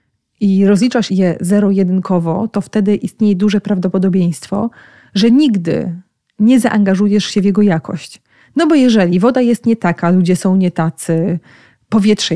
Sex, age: female, 30-49